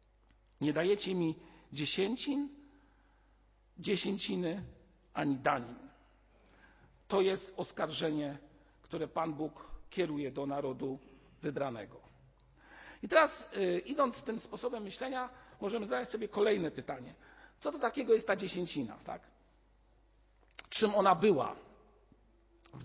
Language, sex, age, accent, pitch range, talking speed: Polish, male, 50-69, native, 145-225 Hz, 110 wpm